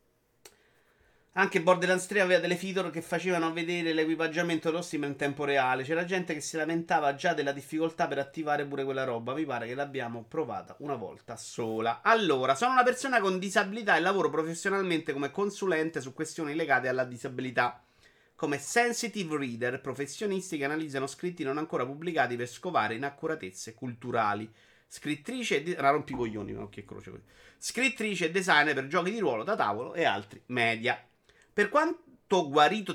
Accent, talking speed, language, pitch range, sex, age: native, 160 wpm, Italian, 125-180 Hz, male, 30-49